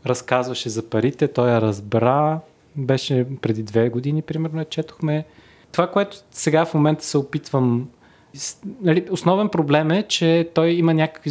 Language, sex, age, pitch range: Bulgarian, male, 20-39, 125-160 Hz